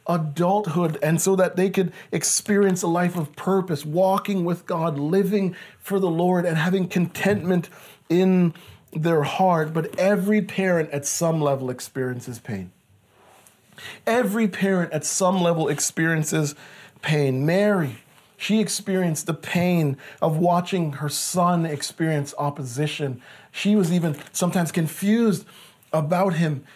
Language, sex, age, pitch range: English, male, 40-59, 155-190 Hz